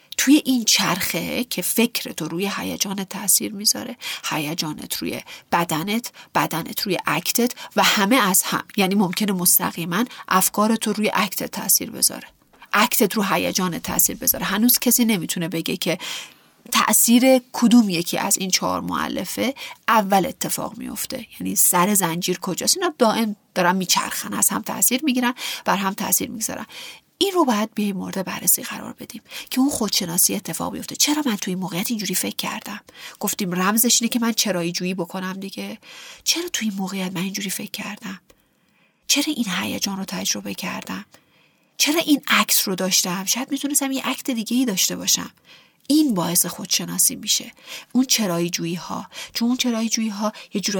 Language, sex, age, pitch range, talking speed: Persian, female, 40-59, 185-245 Hz, 160 wpm